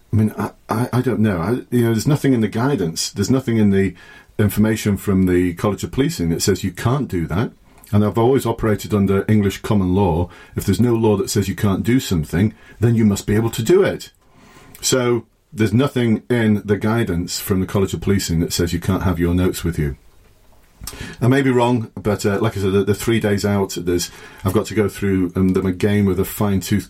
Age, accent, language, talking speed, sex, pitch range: 40-59, British, English, 230 wpm, male, 95-110 Hz